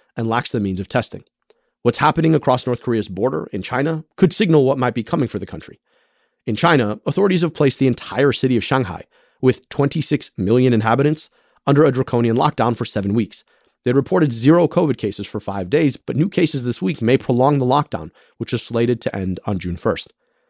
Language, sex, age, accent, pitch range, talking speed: English, male, 30-49, American, 110-145 Hz, 200 wpm